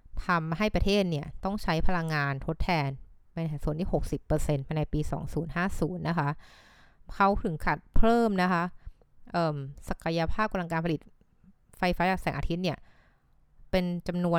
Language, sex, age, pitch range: Thai, female, 20-39, 150-185 Hz